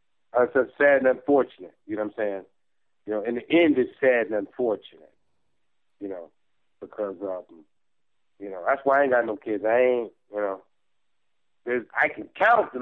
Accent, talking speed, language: American, 200 wpm, English